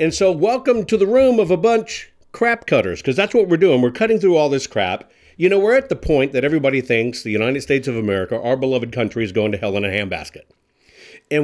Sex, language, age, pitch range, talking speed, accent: male, English, 50-69, 110-170 Hz, 245 wpm, American